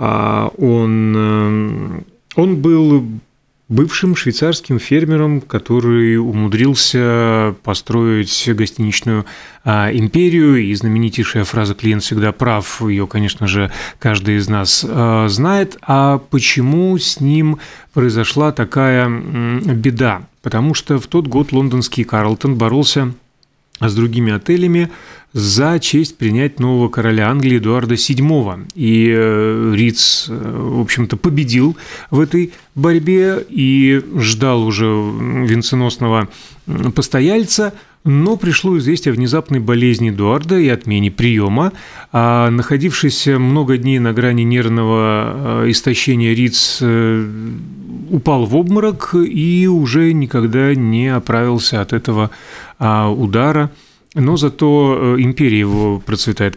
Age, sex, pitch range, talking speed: 30-49, male, 110-145 Hz, 105 wpm